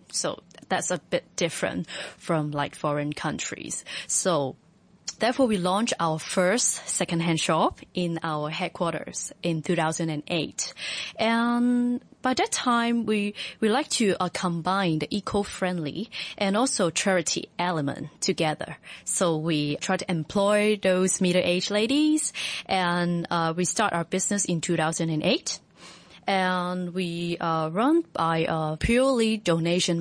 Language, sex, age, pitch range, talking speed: English, female, 20-39, 165-200 Hz, 125 wpm